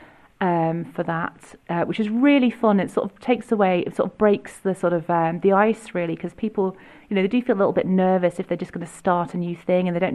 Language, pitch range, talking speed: English, 175-205 Hz, 280 wpm